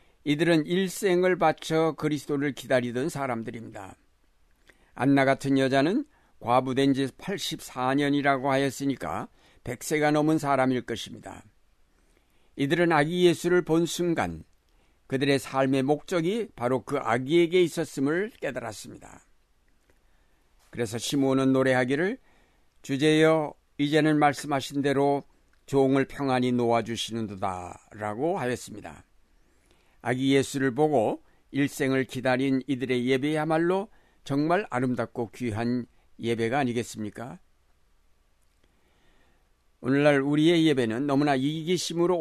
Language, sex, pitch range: Korean, male, 120-145 Hz